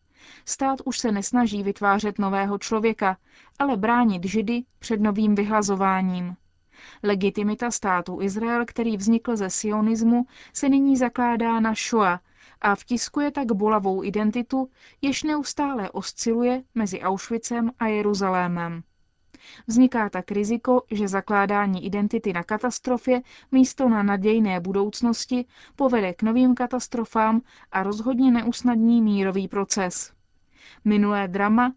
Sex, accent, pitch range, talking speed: female, native, 195-240 Hz, 115 wpm